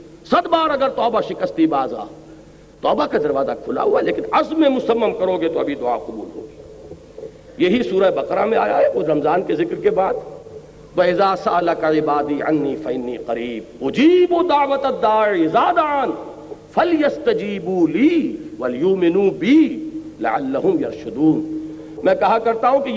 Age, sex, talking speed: 50-69, male, 50 wpm